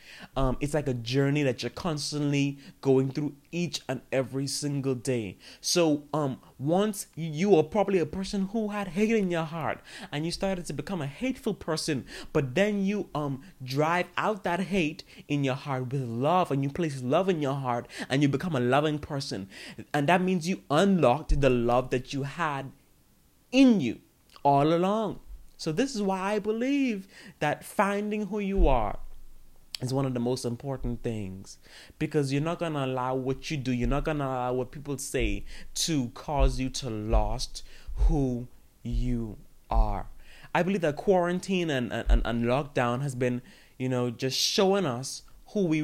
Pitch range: 130-185 Hz